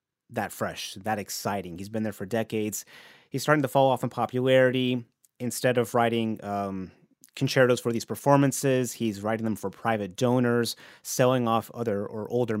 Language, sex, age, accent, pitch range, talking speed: English, male, 30-49, American, 110-130 Hz, 165 wpm